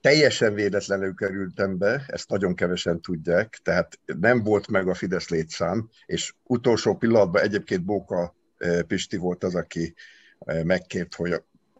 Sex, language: male, Hungarian